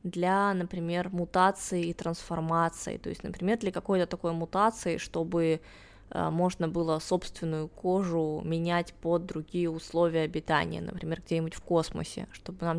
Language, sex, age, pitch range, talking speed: Russian, female, 20-39, 155-180 Hz, 135 wpm